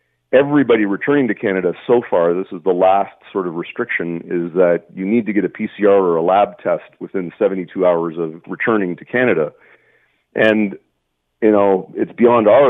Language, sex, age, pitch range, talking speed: English, male, 40-59, 90-110 Hz, 180 wpm